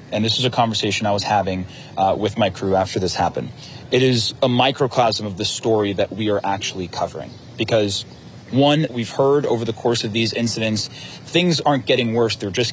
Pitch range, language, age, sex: 105-130 Hz, English, 30-49, male